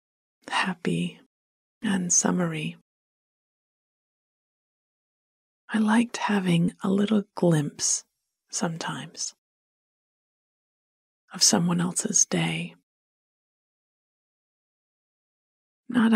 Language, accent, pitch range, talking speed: English, American, 165-210 Hz, 55 wpm